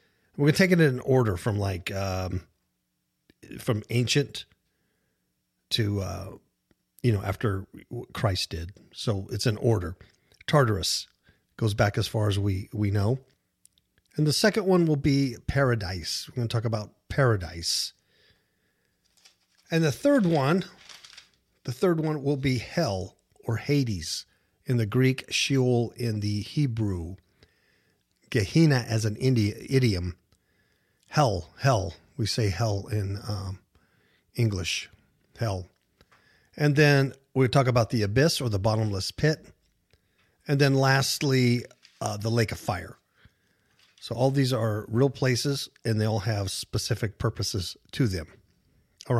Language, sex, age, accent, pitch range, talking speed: English, male, 50-69, American, 100-140 Hz, 135 wpm